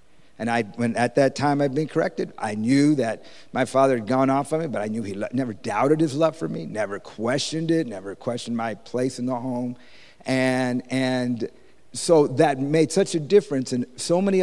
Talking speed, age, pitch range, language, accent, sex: 210 wpm, 50-69, 115-150 Hz, English, American, male